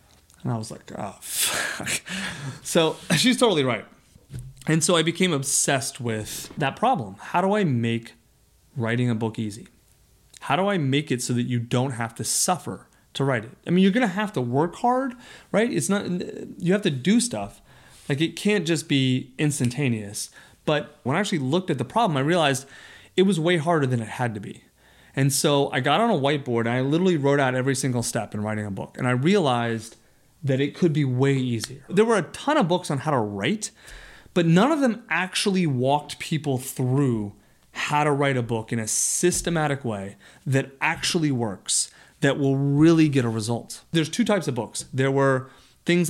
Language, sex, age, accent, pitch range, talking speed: English, male, 30-49, American, 120-170 Hz, 200 wpm